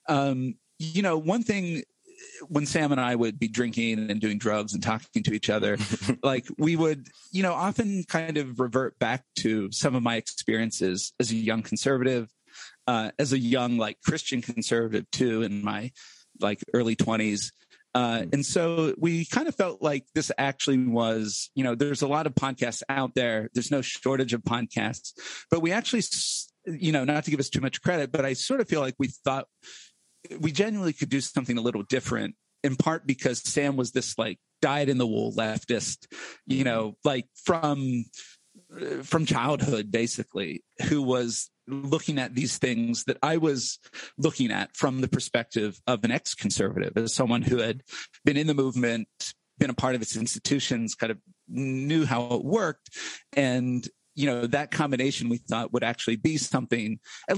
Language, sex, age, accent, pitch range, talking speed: English, male, 40-59, American, 115-150 Hz, 180 wpm